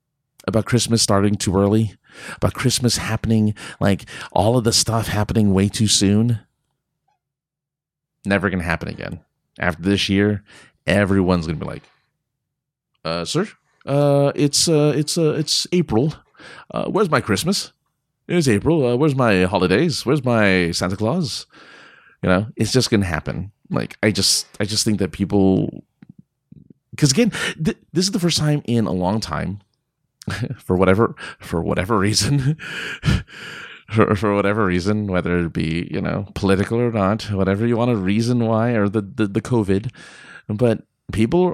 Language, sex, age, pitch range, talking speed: English, male, 30-49, 95-135 Hz, 155 wpm